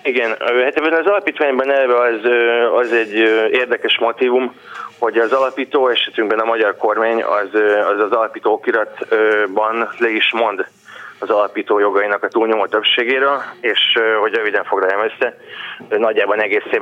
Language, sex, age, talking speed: Hungarian, male, 20-39, 130 wpm